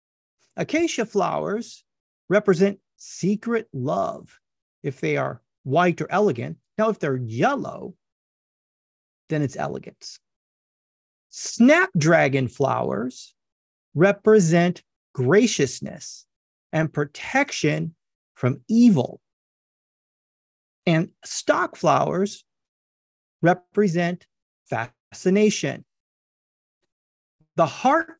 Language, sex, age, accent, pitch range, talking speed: English, male, 30-49, American, 160-240 Hz, 70 wpm